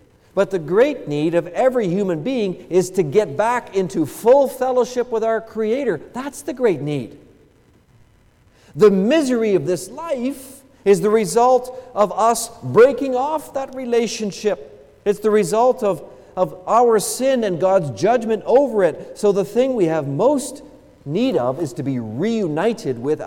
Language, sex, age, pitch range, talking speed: English, male, 40-59, 145-230 Hz, 155 wpm